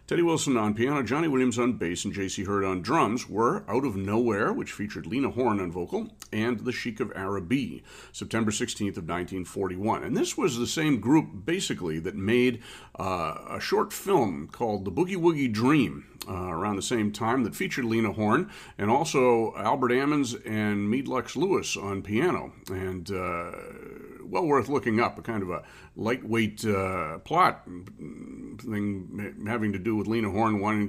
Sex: male